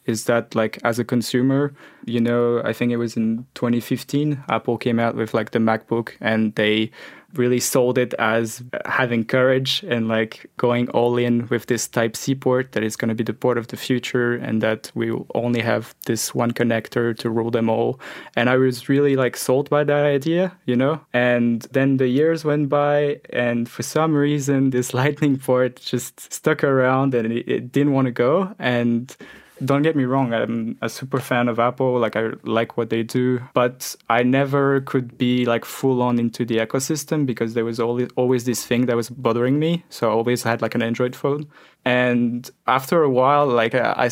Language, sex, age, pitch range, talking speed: English, male, 20-39, 120-135 Hz, 200 wpm